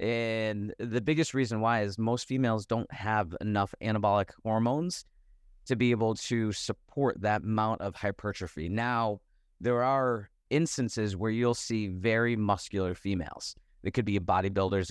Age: 30-49